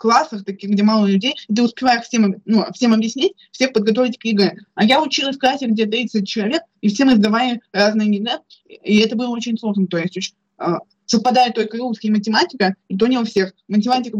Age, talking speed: 20-39, 200 wpm